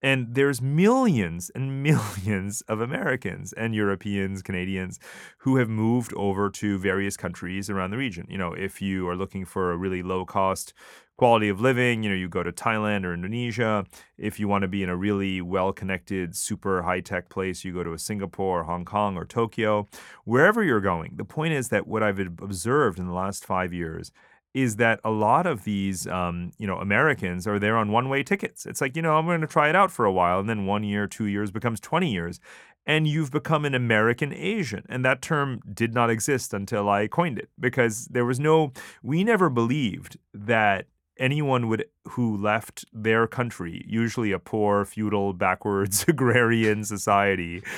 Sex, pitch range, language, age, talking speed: male, 95-125 Hz, English, 30-49, 195 wpm